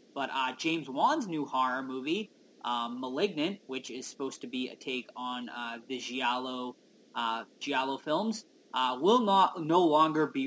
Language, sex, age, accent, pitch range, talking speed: English, male, 20-39, American, 130-175 Hz, 165 wpm